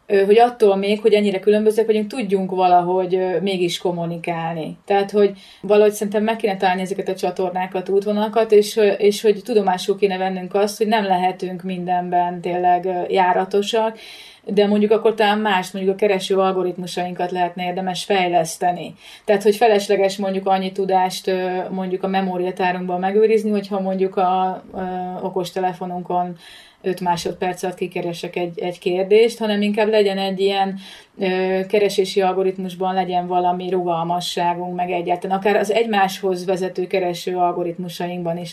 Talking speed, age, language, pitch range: 135 wpm, 30-49, Hungarian, 185-205 Hz